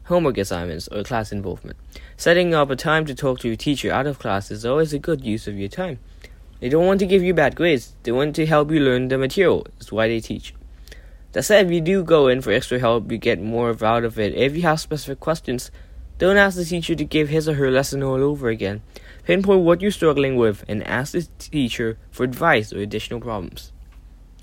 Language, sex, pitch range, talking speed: English, male, 110-160 Hz, 230 wpm